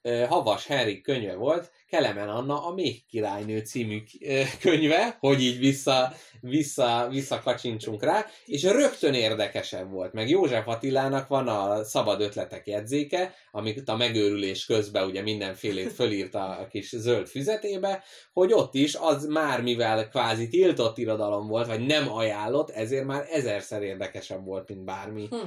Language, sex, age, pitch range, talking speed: Hungarian, male, 20-39, 105-145 Hz, 140 wpm